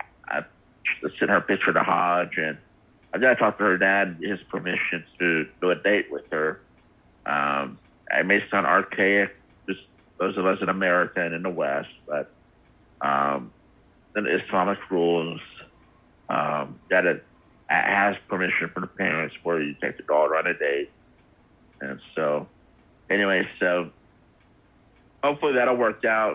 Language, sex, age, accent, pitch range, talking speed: English, male, 50-69, American, 85-100 Hz, 155 wpm